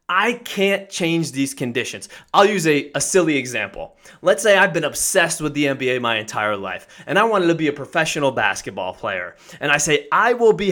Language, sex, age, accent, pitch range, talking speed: English, male, 20-39, American, 145-205 Hz, 205 wpm